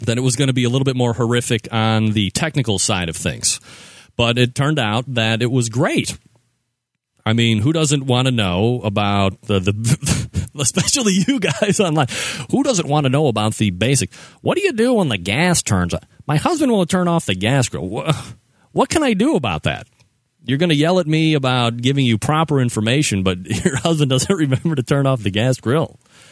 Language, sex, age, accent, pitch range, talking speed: English, male, 30-49, American, 110-155 Hz, 205 wpm